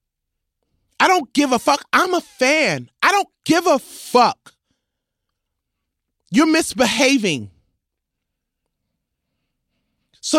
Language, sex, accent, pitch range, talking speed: English, male, American, 220-320 Hz, 90 wpm